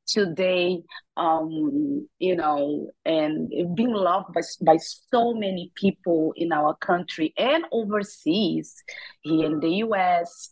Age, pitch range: 30-49, 160-215 Hz